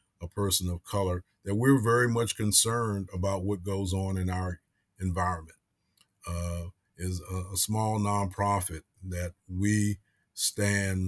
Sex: male